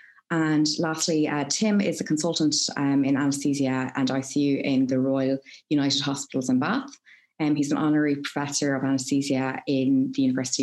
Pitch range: 140-155 Hz